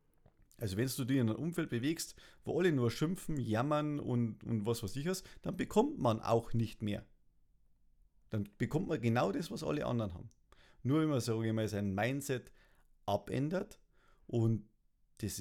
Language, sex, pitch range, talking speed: German, male, 105-140 Hz, 180 wpm